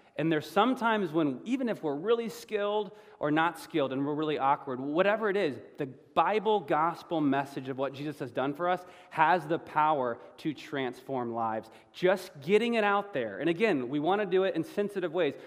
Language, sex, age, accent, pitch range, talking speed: English, male, 30-49, American, 130-180 Hz, 200 wpm